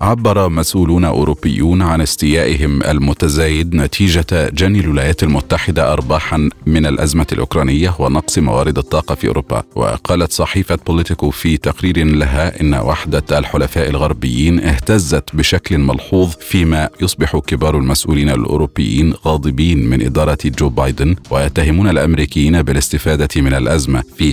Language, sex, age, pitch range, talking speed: Arabic, male, 40-59, 70-85 Hz, 120 wpm